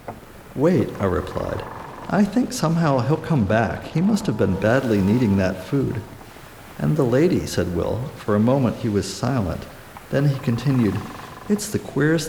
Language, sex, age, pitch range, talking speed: English, male, 50-69, 105-135 Hz, 165 wpm